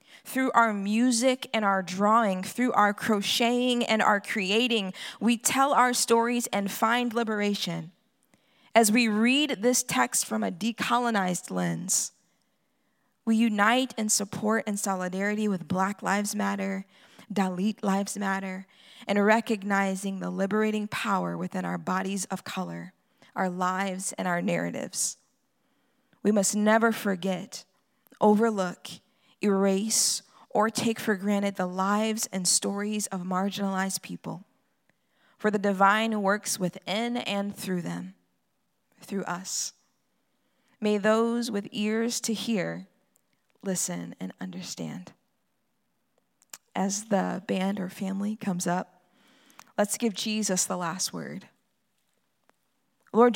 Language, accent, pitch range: English, American, 190-225 Hz